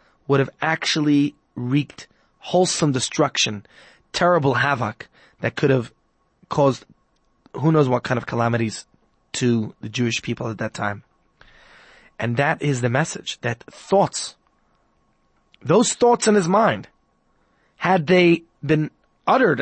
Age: 20-39